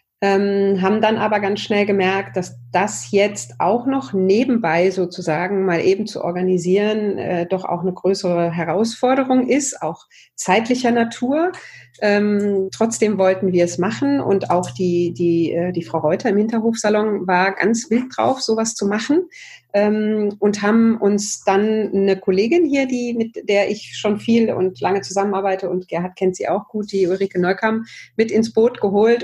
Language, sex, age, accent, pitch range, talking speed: German, female, 30-49, German, 175-210 Hz, 165 wpm